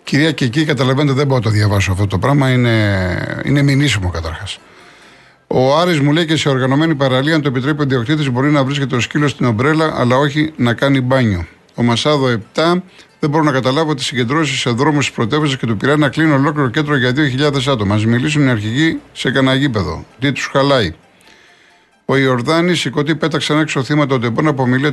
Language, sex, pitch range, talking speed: Greek, male, 115-150 Hz, 200 wpm